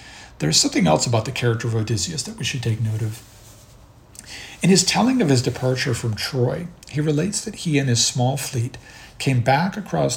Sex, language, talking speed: male, English, 195 wpm